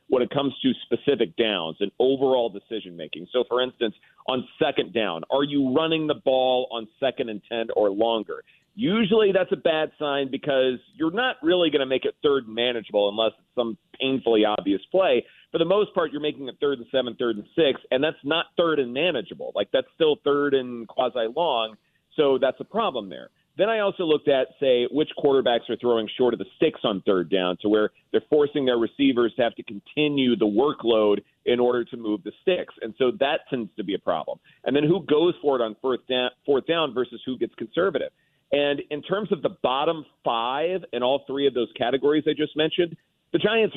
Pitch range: 120-160 Hz